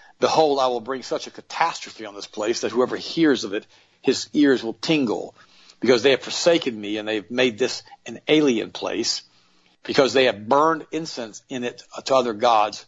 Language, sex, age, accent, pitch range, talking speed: English, male, 50-69, American, 115-135 Hz, 190 wpm